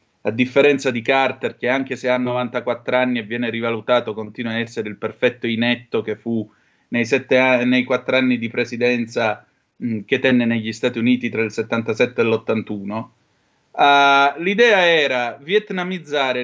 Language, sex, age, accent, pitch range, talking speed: Italian, male, 30-49, native, 115-140 Hz, 145 wpm